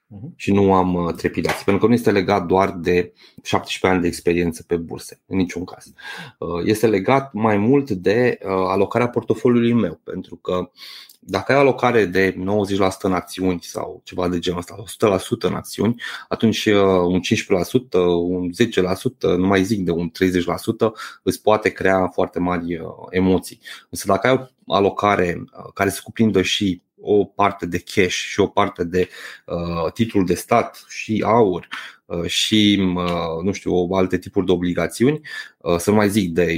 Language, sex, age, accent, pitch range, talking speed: Romanian, male, 20-39, native, 90-110 Hz, 165 wpm